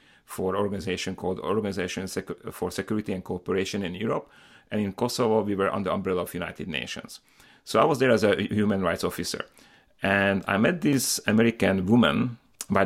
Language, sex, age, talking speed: English, male, 40-59, 175 wpm